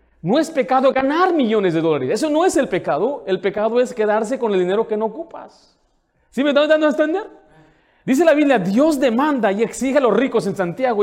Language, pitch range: Spanish, 195-290 Hz